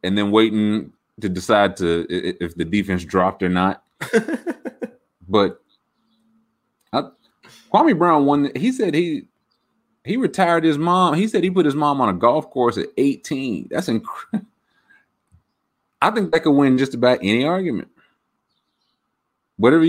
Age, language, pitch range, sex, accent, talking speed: 30-49, English, 95-150 Hz, male, American, 145 wpm